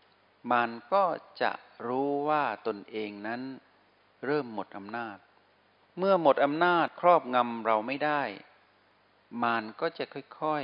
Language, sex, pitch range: Thai, male, 105-145 Hz